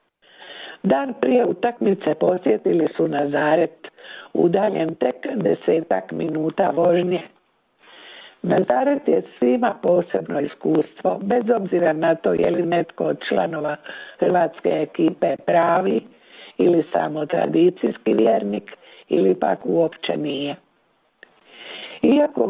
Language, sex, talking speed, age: Croatian, female, 100 wpm, 60-79